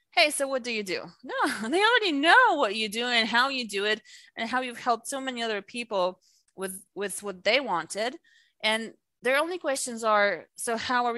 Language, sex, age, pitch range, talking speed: English, female, 30-49, 185-250 Hz, 210 wpm